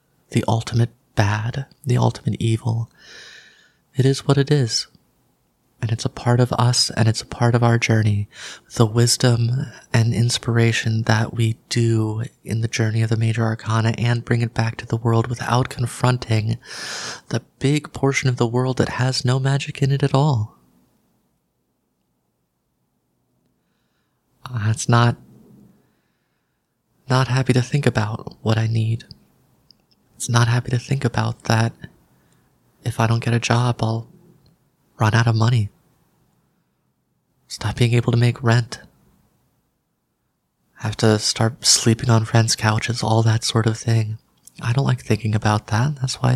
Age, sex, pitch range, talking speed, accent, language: 30-49, male, 110-125 Hz, 155 wpm, American, English